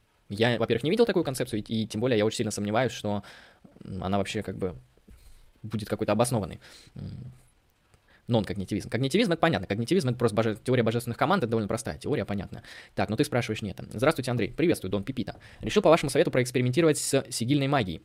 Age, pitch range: 20-39, 110-145 Hz